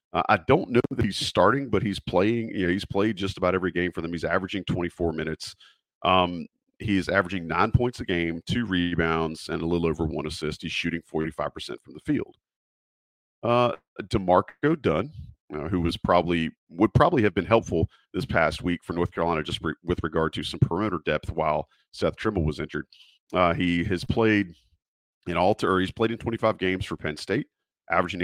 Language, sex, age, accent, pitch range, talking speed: English, male, 40-59, American, 85-100 Hz, 200 wpm